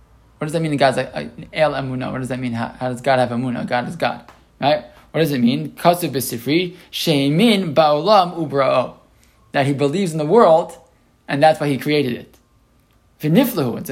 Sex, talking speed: male, 150 wpm